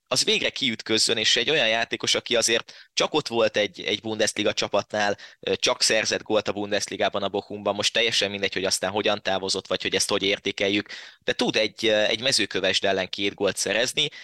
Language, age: Hungarian, 20-39